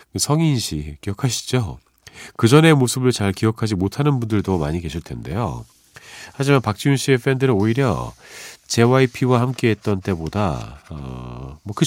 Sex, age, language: male, 40-59, Korean